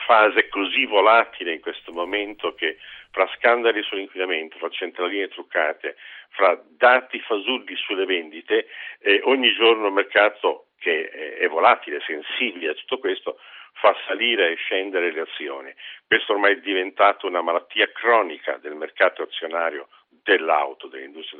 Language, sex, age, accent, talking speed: Italian, male, 50-69, native, 135 wpm